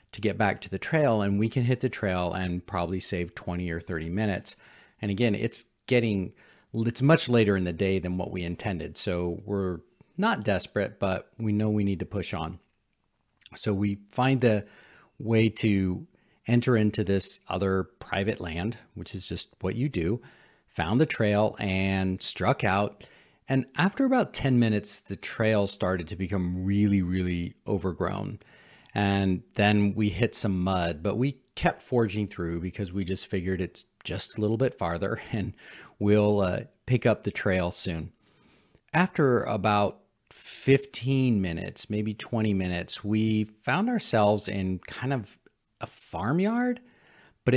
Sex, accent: male, American